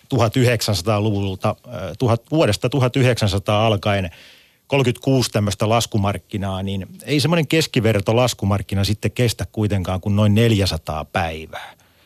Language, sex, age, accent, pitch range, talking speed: Finnish, male, 40-59, native, 95-120 Hz, 100 wpm